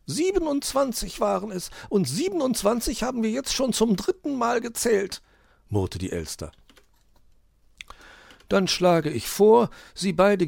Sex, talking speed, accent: male, 125 wpm, German